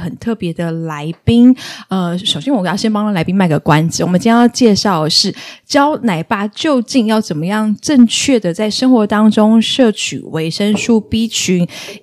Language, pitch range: Chinese, 185-240 Hz